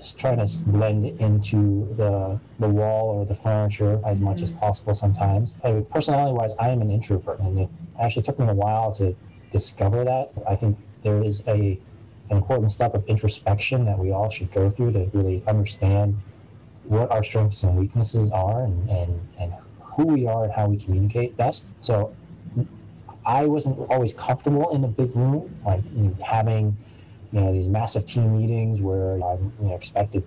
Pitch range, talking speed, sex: 95-115 Hz, 185 wpm, male